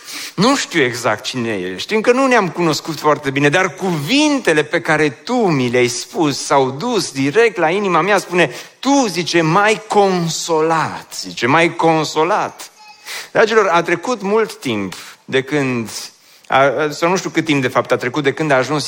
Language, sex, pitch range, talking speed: Romanian, male, 135-200 Hz, 180 wpm